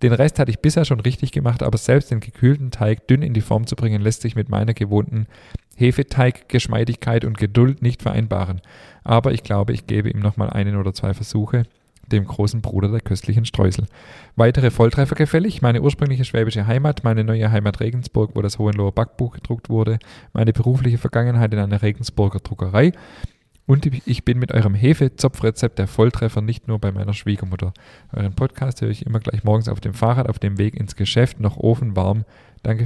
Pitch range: 105-125 Hz